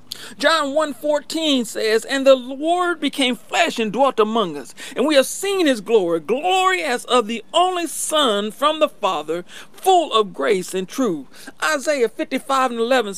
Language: English